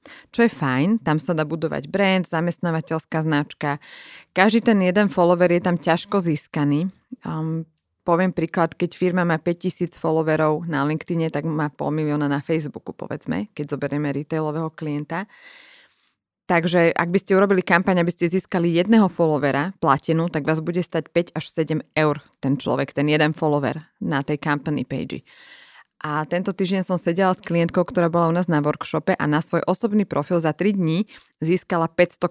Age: 20-39